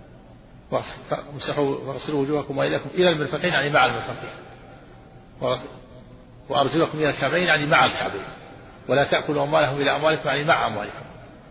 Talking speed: 110 wpm